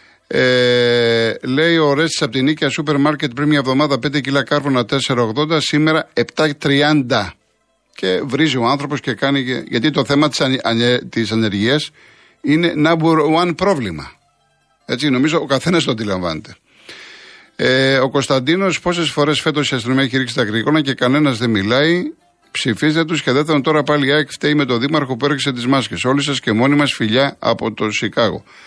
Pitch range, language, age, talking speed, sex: 115-150 Hz, Greek, 50-69, 165 wpm, male